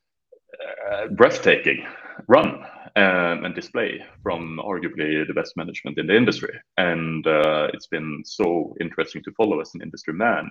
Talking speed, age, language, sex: 150 wpm, 30-49, English, male